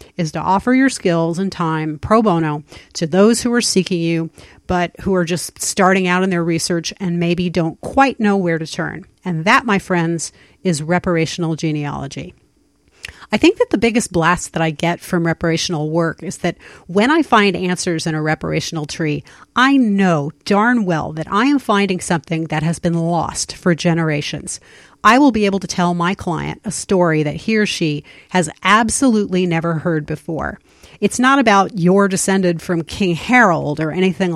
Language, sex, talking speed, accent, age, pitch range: English, female, 185 wpm, American, 40-59, 170-215 Hz